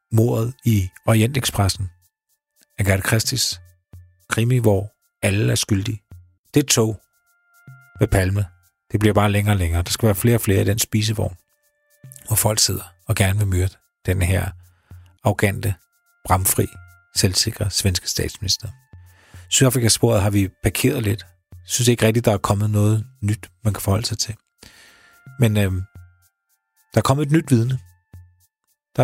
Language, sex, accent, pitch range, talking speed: Danish, male, native, 95-120 Hz, 145 wpm